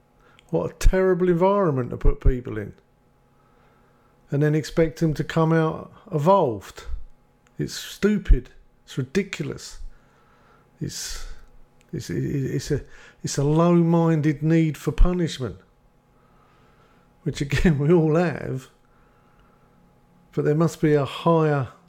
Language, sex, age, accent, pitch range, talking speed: English, male, 50-69, British, 130-165 Hz, 110 wpm